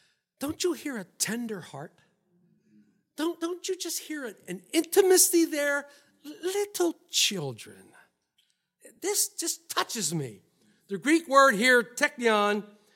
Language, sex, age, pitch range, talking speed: English, male, 50-69, 235-325 Hz, 115 wpm